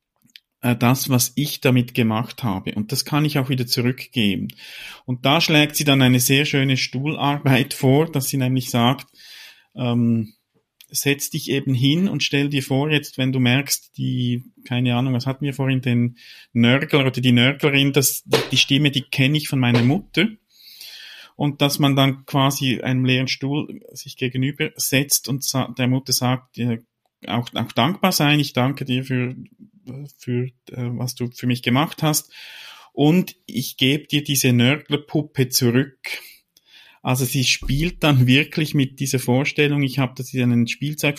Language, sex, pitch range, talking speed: German, male, 125-145 Hz, 170 wpm